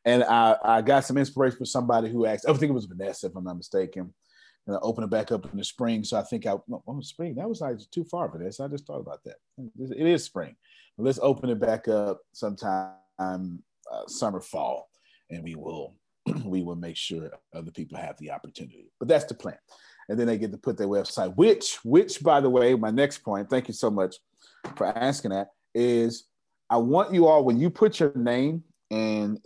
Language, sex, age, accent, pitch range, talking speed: English, male, 30-49, American, 105-135 Hz, 220 wpm